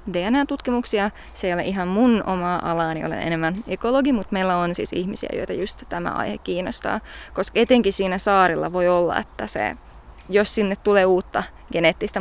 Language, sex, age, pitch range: Finnish, female, 20-39, 180-220 Hz